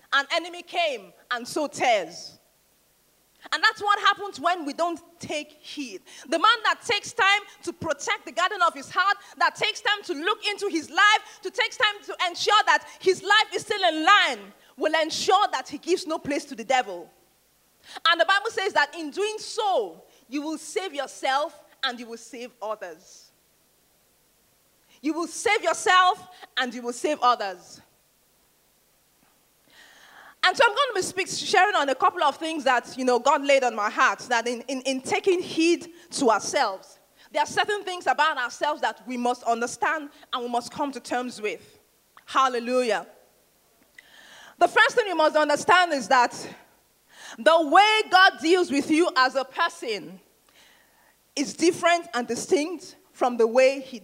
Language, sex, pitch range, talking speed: English, female, 265-375 Hz, 170 wpm